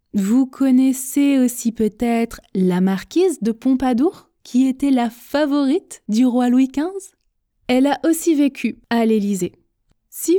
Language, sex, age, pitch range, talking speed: French, female, 20-39, 210-285 Hz, 135 wpm